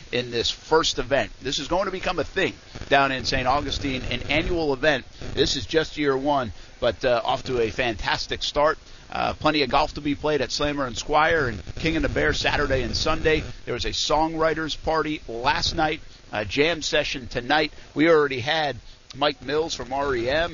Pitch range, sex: 125-155 Hz, male